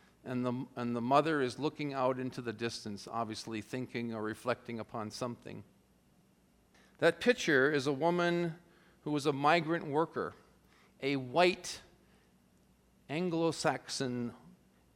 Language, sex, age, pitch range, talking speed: English, male, 50-69, 115-145 Hz, 120 wpm